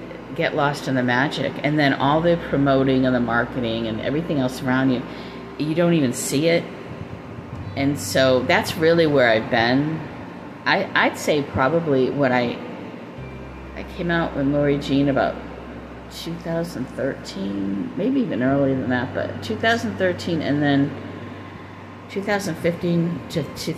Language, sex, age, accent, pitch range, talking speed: English, female, 40-59, American, 125-145 Hz, 135 wpm